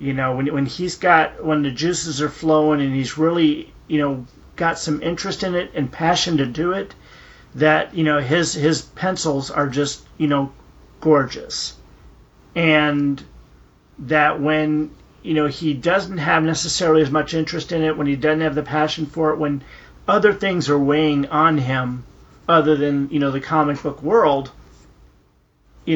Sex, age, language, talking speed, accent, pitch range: male, 40-59, English, 175 wpm, American, 140-160 Hz